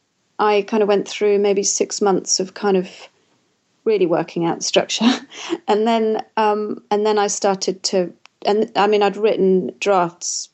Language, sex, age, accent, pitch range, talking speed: English, female, 30-49, British, 185-210 Hz, 165 wpm